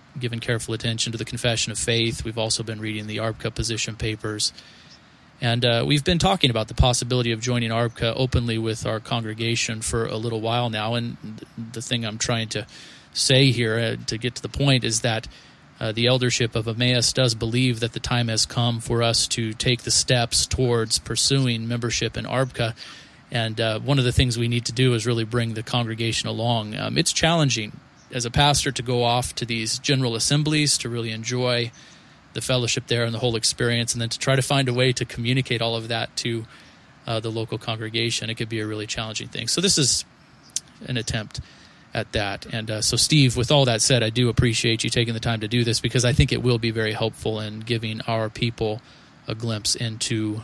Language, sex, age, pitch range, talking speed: English, male, 30-49, 115-125 Hz, 215 wpm